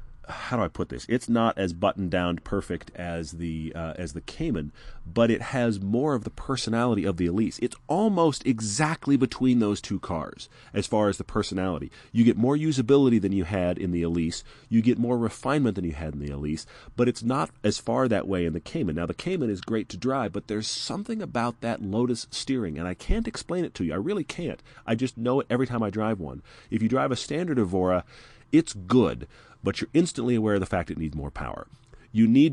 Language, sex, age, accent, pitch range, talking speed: English, male, 40-59, American, 95-125 Hz, 225 wpm